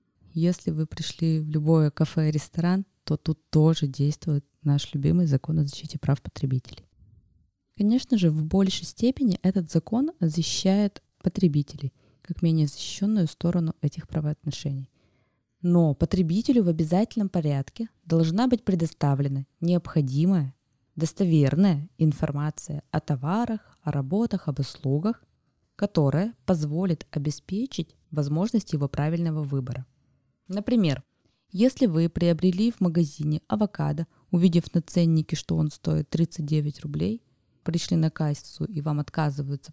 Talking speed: 120 wpm